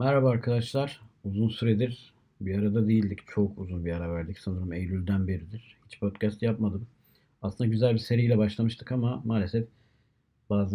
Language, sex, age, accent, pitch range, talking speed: Turkish, male, 50-69, native, 105-125 Hz, 145 wpm